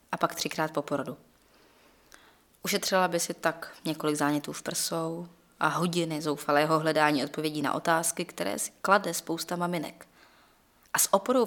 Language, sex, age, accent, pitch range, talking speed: Czech, female, 20-39, native, 155-190 Hz, 145 wpm